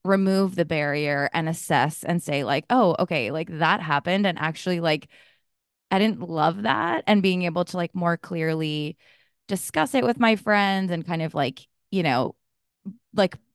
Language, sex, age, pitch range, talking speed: English, female, 20-39, 155-180 Hz, 175 wpm